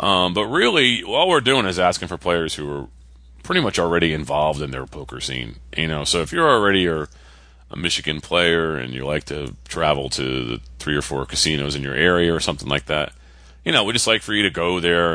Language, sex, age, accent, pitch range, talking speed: English, male, 30-49, American, 65-85 Hz, 230 wpm